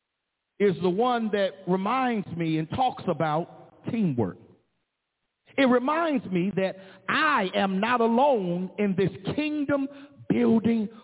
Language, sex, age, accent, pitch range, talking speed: English, male, 50-69, American, 200-295 Hz, 115 wpm